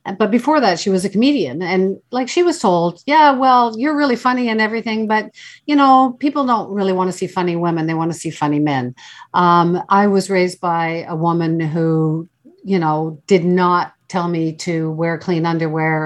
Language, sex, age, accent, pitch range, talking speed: English, female, 50-69, American, 160-220 Hz, 200 wpm